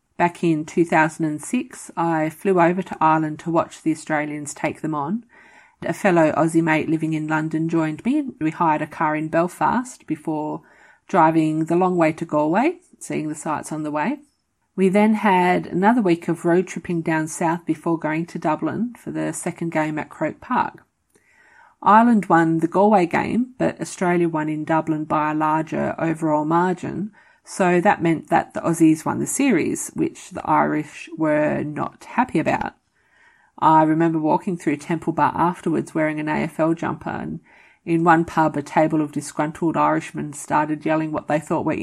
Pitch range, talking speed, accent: 155-215 Hz, 175 wpm, Australian